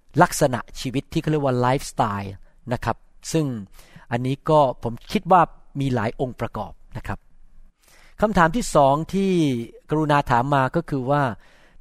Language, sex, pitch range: Thai, male, 125-165 Hz